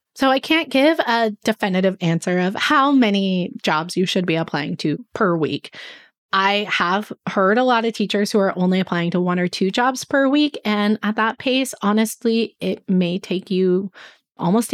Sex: female